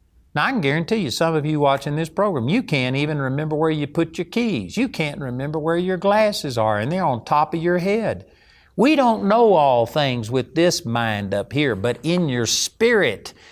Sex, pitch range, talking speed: male, 125-165 Hz, 215 wpm